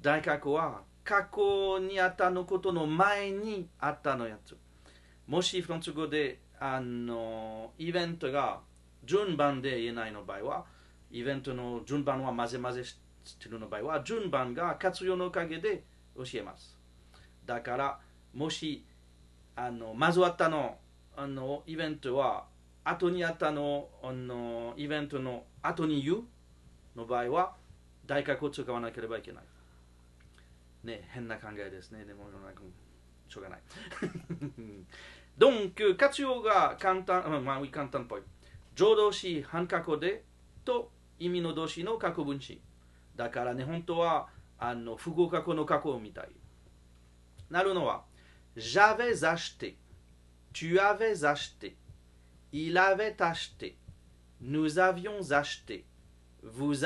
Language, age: Japanese, 40-59